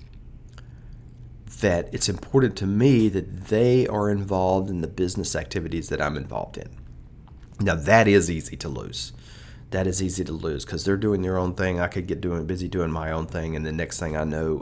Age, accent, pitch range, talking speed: 40-59, American, 80-110 Hz, 200 wpm